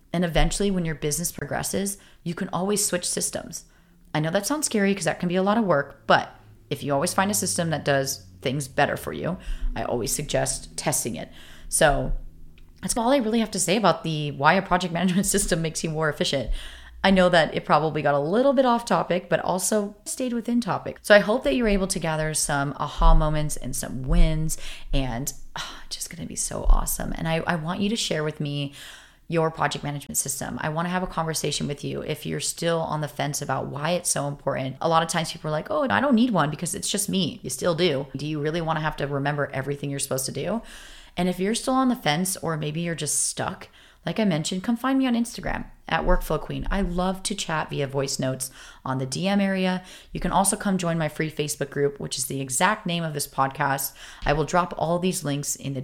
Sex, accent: female, American